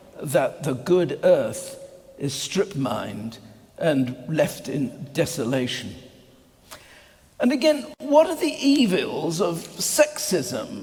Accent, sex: British, male